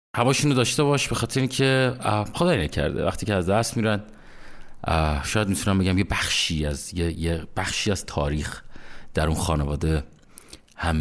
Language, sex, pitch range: Persian, male, 90-125 Hz